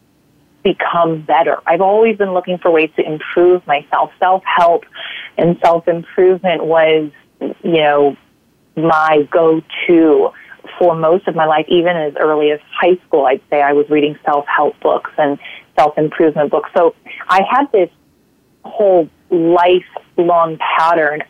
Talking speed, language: 130 wpm, English